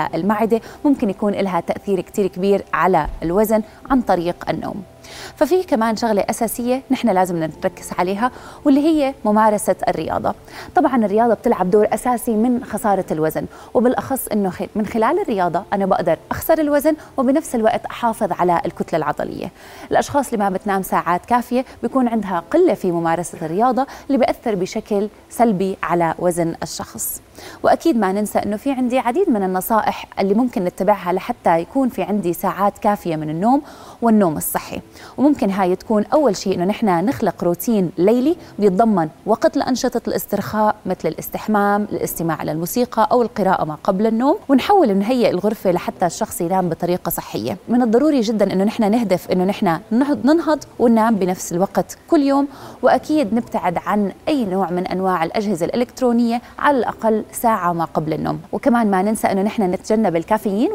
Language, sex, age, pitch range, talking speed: Arabic, female, 20-39, 185-245 Hz, 155 wpm